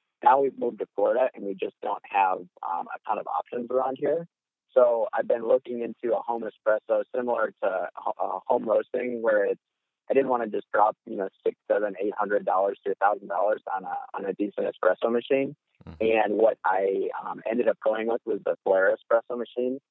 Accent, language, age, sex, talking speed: American, English, 30-49, male, 210 wpm